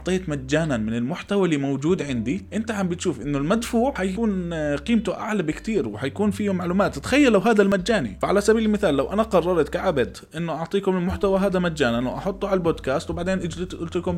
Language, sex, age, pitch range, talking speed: Arabic, male, 20-39, 130-190 Hz, 180 wpm